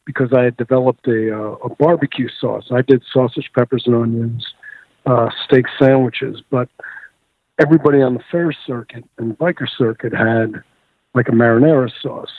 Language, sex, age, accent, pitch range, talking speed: English, male, 50-69, American, 115-140 Hz, 150 wpm